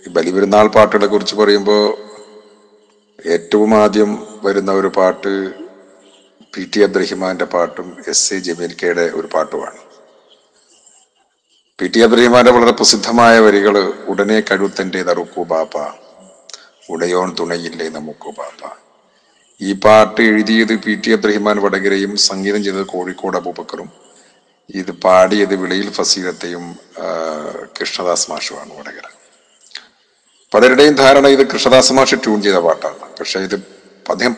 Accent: native